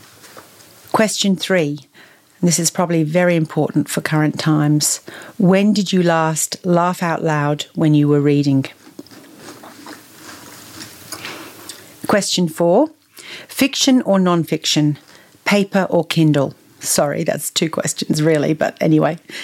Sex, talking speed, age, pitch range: female, 115 wpm, 40-59, 155-190 Hz